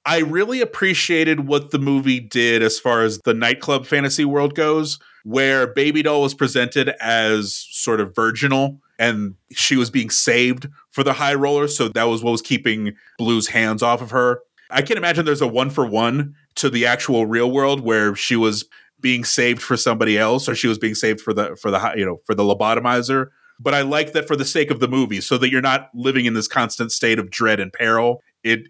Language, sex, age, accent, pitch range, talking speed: English, male, 30-49, American, 115-140 Hz, 215 wpm